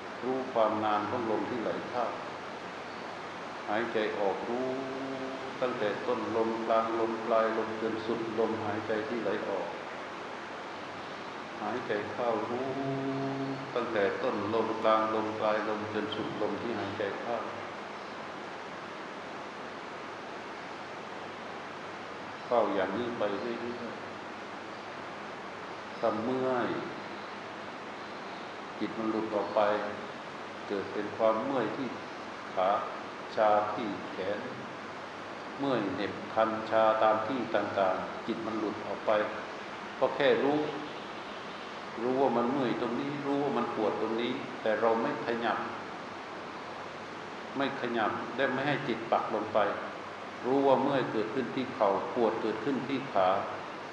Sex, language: male, Thai